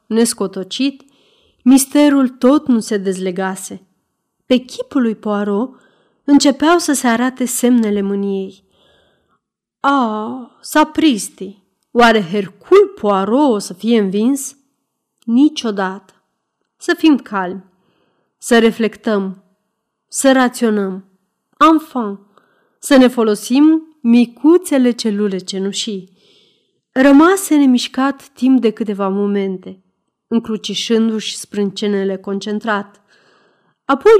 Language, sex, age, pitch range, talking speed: Romanian, female, 30-49, 205-275 Hz, 90 wpm